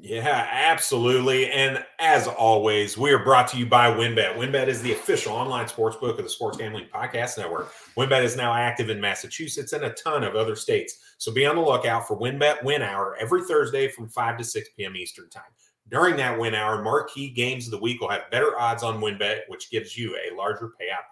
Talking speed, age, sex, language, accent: 215 wpm, 30-49, male, English, American